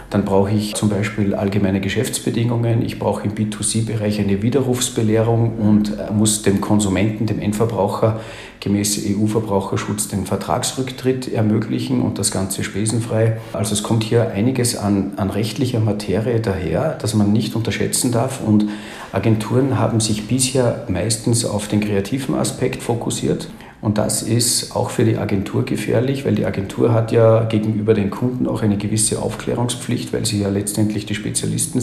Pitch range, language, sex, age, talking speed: 100-115 Hz, German, male, 40-59, 150 wpm